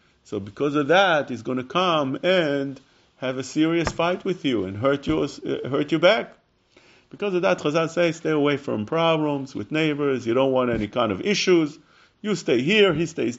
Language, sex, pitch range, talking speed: English, male, 130-180 Hz, 200 wpm